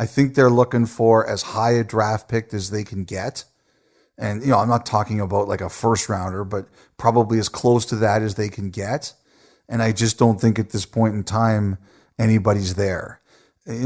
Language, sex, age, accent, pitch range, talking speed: English, male, 40-59, American, 100-120 Hz, 210 wpm